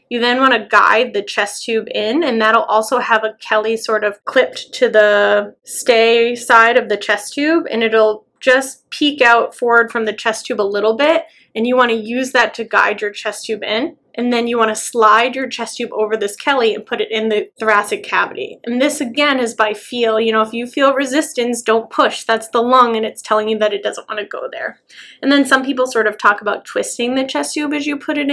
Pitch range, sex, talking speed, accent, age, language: 220-260 Hz, female, 240 wpm, American, 20-39, English